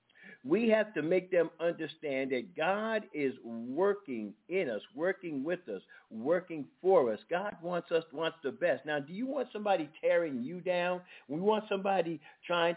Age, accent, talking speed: 50-69, American, 170 wpm